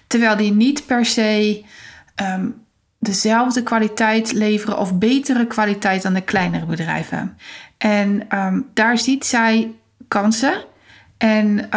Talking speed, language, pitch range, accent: 105 wpm, Dutch, 205-235 Hz, Dutch